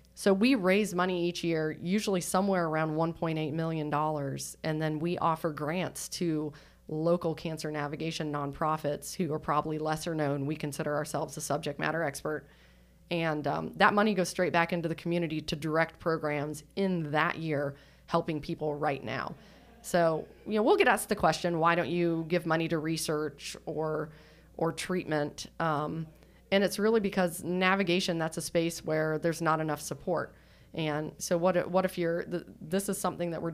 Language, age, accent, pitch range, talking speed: English, 30-49, American, 150-175 Hz, 175 wpm